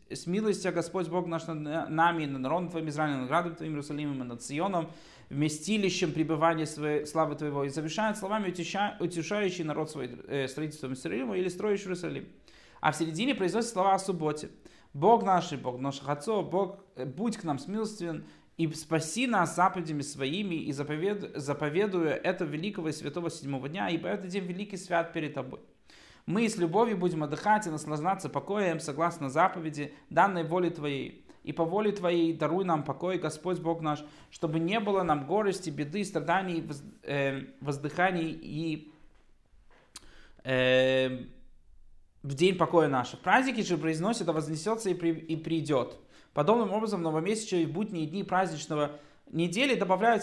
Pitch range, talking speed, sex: 150-190 Hz, 150 wpm, male